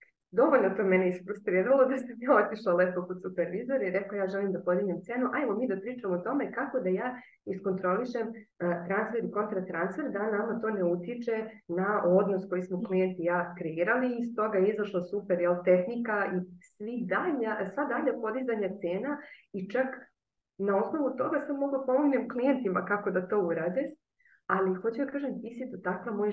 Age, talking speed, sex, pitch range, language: 20-39, 180 wpm, female, 180-230 Hz, Croatian